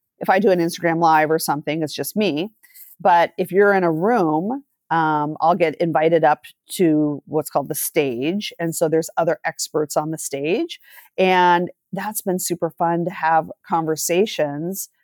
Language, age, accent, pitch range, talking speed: English, 40-59, American, 155-185 Hz, 170 wpm